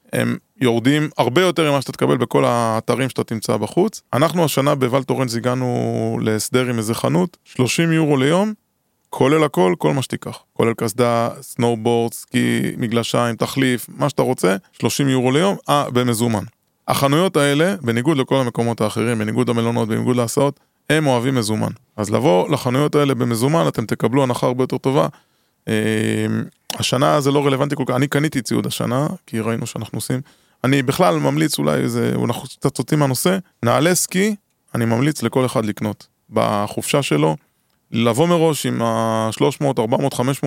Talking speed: 140 wpm